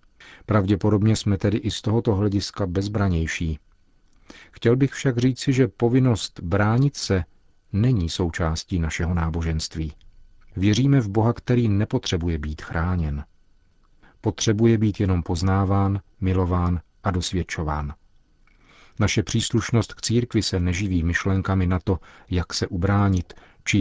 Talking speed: 120 wpm